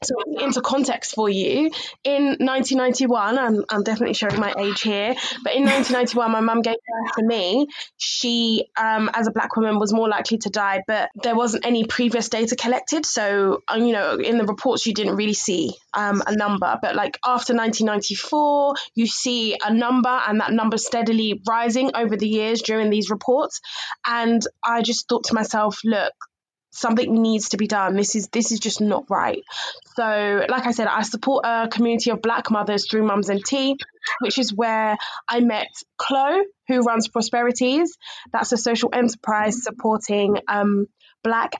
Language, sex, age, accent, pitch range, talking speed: English, female, 10-29, British, 215-245 Hz, 175 wpm